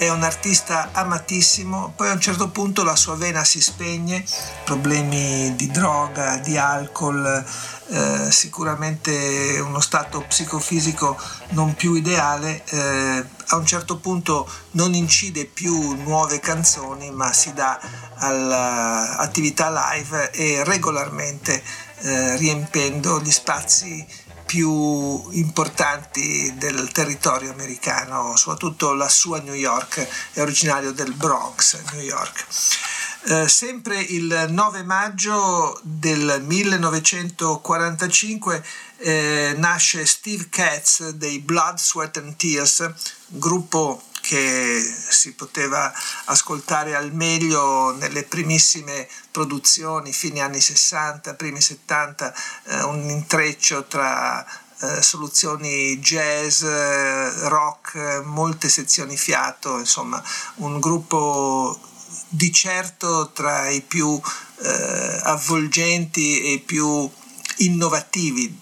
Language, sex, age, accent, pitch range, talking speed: Italian, male, 50-69, native, 140-170 Hz, 100 wpm